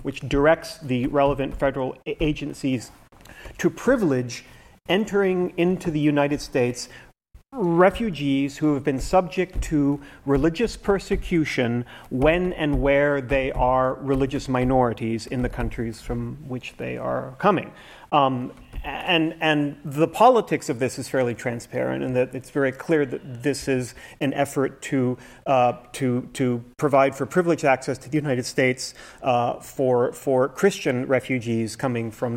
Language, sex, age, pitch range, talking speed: English, male, 40-59, 130-165 Hz, 140 wpm